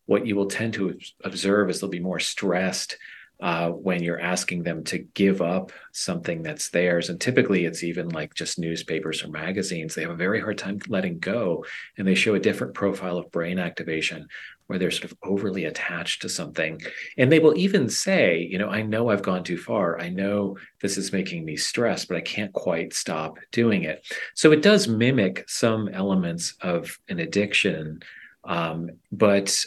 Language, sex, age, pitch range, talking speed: English, male, 40-59, 85-110 Hz, 190 wpm